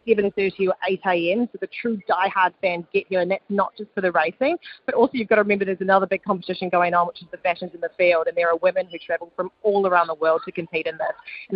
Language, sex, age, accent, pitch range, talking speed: English, female, 20-39, Australian, 190-225 Hz, 275 wpm